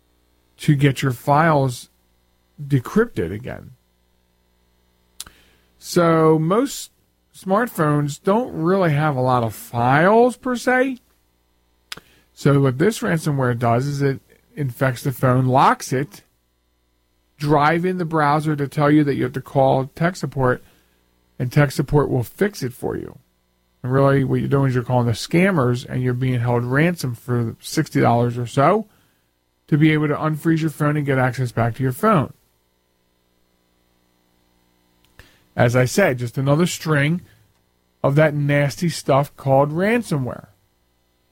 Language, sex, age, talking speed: English, male, 40-59, 140 wpm